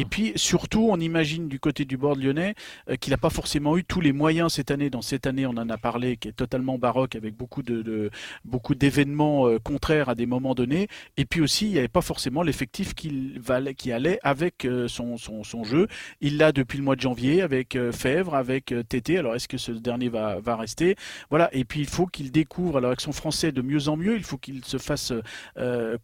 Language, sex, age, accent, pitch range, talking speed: French, male, 40-59, French, 125-160 Hz, 240 wpm